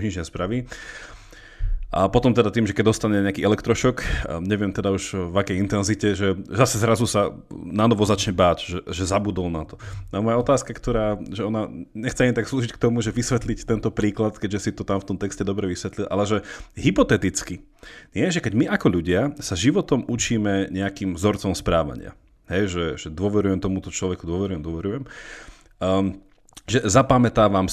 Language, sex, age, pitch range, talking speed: Slovak, male, 30-49, 95-115 Hz, 175 wpm